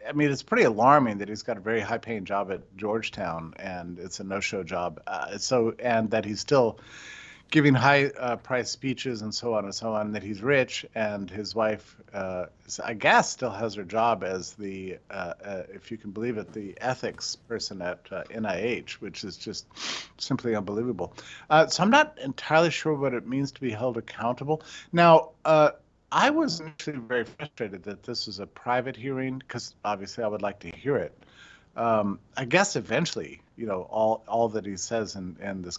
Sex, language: male, English